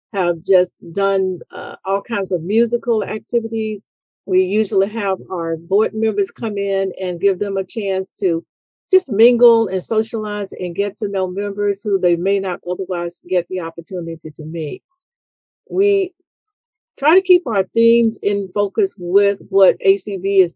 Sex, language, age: female, English, 50-69